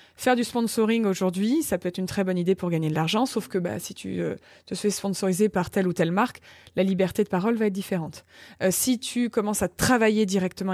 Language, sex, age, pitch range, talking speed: French, female, 20-39, 185-240 Hz, 240 wpm